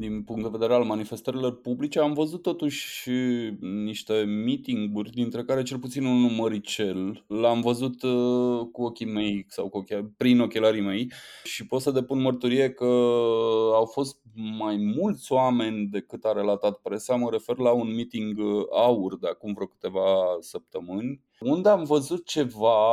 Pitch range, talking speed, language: 110-135 Hz, 150 wpm, Romanian